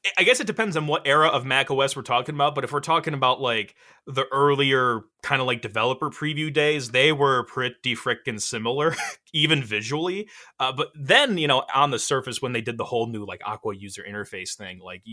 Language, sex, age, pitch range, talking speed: English, male, 20-39, 115-135 Hz, 210 wpm